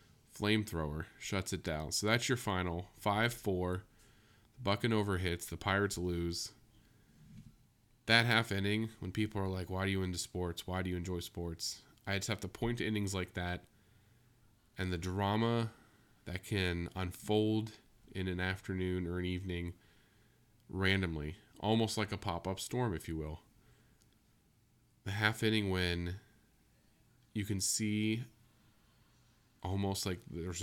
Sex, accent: male, American